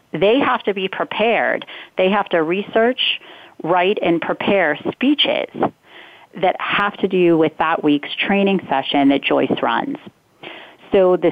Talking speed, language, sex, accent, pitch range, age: 145 wpm, English, female, American, 150-180 Hz, 30-49